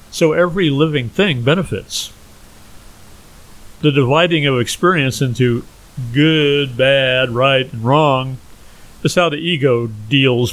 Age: 50-69